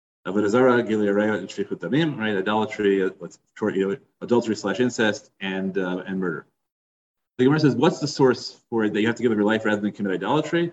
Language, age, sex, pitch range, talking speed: English, 30-49, male, 105-135 Hz, 185 wpm